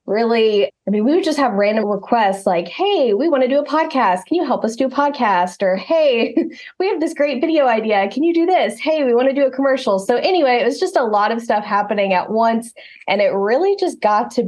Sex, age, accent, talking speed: female, 20-39, American, 255 wpm